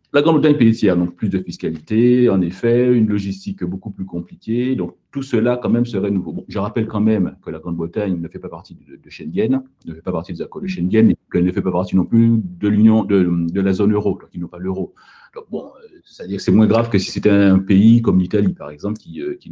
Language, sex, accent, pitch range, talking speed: French, male, French, 90-115 Hz, 260 wpm